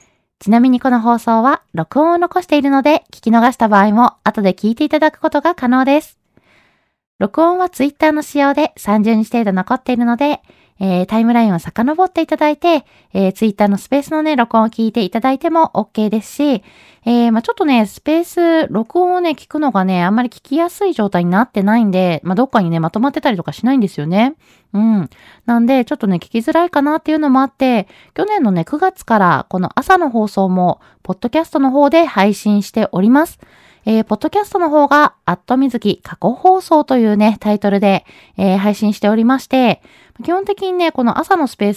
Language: Japanese